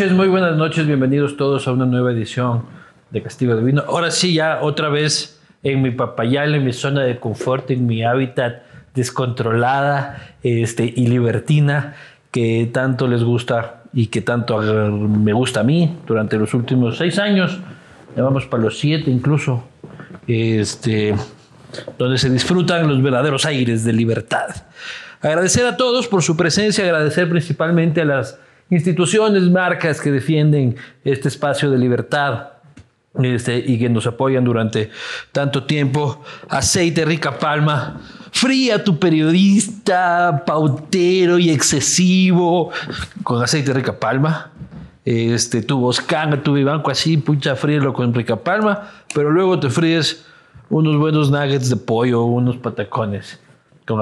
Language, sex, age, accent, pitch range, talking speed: Spanish, male, 50-69, Mexican, 120-165 Hz, 140 wpm